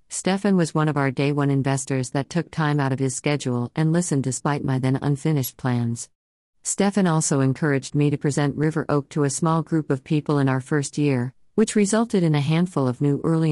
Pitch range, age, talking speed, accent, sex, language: 130-155 Hz, 50-69, 215 wpm, American, female, English